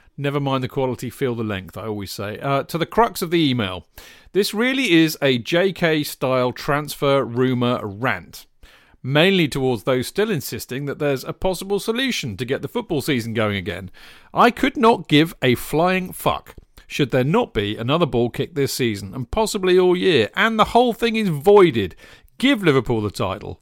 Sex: male